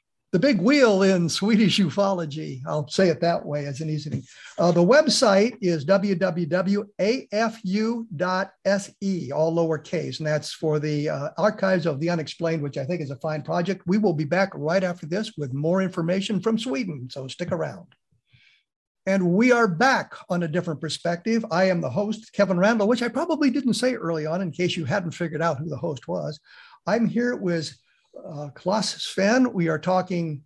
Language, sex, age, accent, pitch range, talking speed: English, male, 50-69, American, 160-200 Hz, 180 wpm